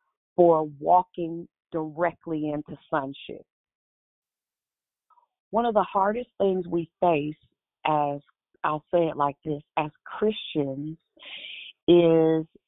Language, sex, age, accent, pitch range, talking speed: English, female, 40-59, American, 155-205 Hz, 100 wpm